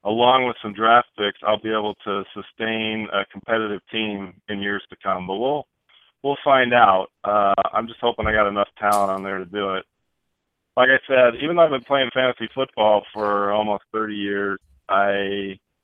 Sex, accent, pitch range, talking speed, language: male, American, 100-115 Hz, 190 wpm, English